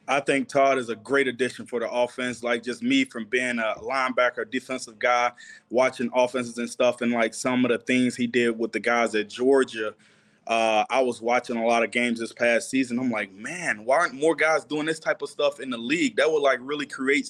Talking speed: 230 wpm